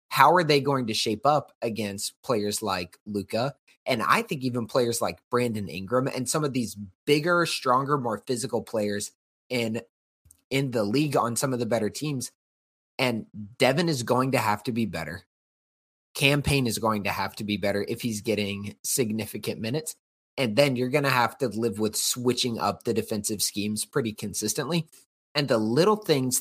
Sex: male